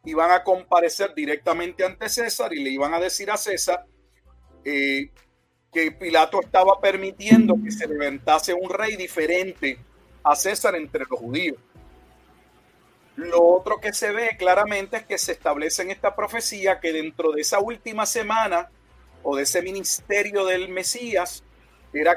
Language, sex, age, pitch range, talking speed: Spanish, male, 40-59, 155-205 Hz, 150 wpm